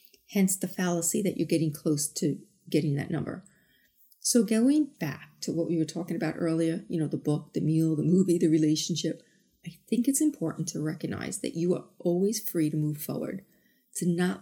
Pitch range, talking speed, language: 160-215 Hz, 195 wpm, English